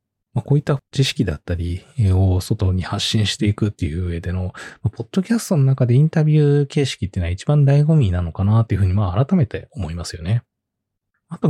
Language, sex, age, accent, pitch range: Japanese, male, 20-39, native, 95-135 Hz